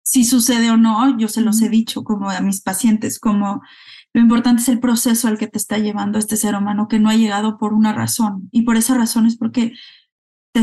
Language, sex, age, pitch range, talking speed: Spanish, female, 20-39, 210-235 Hz, 230 wpm